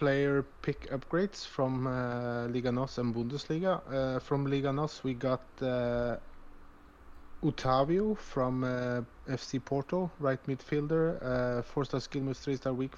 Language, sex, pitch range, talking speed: English, male, 100-130 Hz, 145 wpm